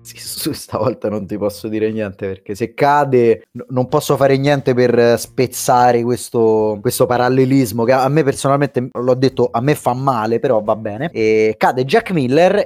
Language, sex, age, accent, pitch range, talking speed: Italian, male, 30-49, native, 105-135 Hz, 180 wpm